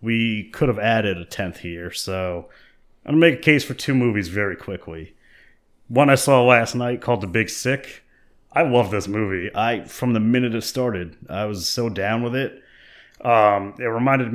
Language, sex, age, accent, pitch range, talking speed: English, male, 30-49, American, 95-120 Hz, 195 wpm